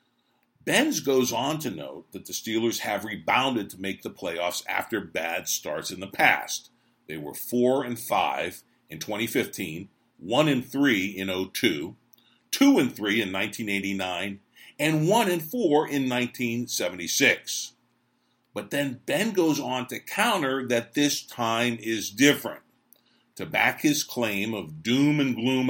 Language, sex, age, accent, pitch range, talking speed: English, male, 50-69, American, 110-145 Hz, 140 wpm